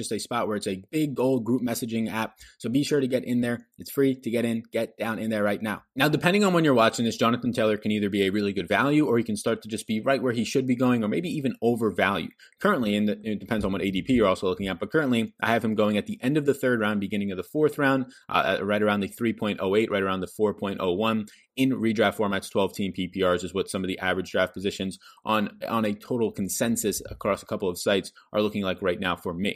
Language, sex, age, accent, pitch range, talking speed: English, male, 20-39, American, 95-120 Hz, 265 wpm